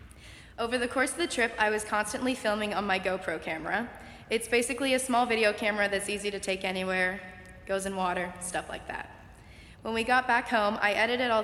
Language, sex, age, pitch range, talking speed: English, female, 20-39, 190-225 Hz, 205 wpm